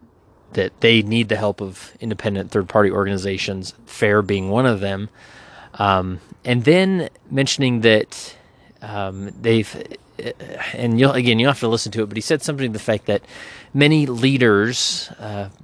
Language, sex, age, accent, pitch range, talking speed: English, male, 30-49, American, 105-120 Hz, 155 wpm